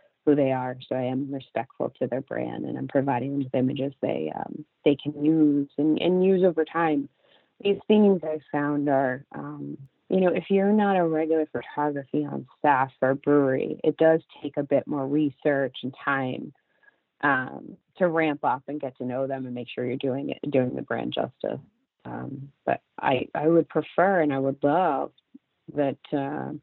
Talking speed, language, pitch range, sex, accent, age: 190 wpm, English, 130-150 Hz, female, American, 30-49